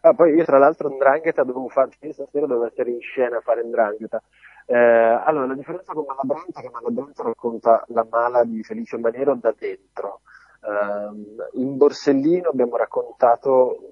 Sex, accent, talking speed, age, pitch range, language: male, native, 165 wpm, 30-49, 120-165 Hz, Italian